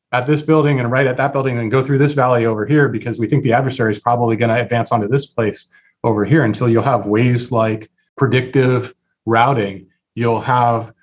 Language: English